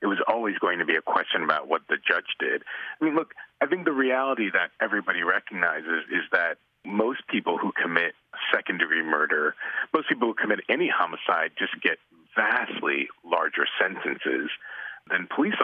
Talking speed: 170 wpm